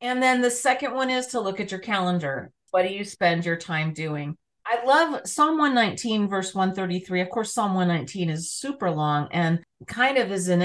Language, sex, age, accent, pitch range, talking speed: English, female, 30-49, American, 170-225 Hz, 205 wpm